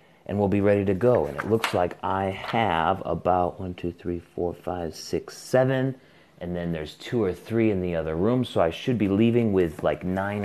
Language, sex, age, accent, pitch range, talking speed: English, male, 30-49, American, 80-95 Hz, 220 wpm